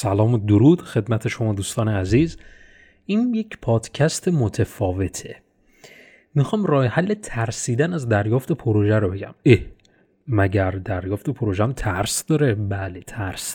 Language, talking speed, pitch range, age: Persian, 120 wpm, 105-145 Hz, 30-49